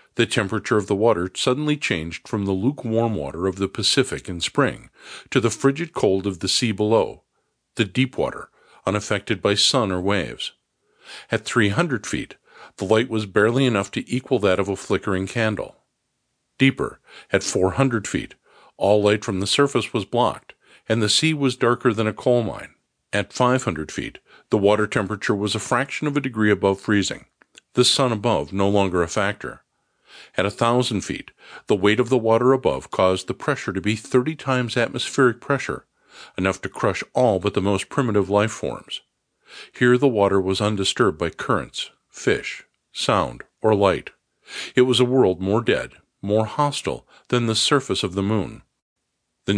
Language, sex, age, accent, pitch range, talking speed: English, male, 50-69, American, 100-125 Hz, 175 wpm